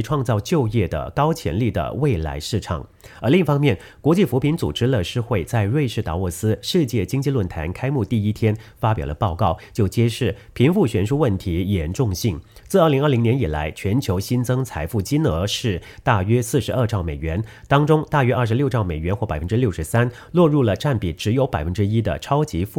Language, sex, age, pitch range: English, male, 30-49, 95-130 Hz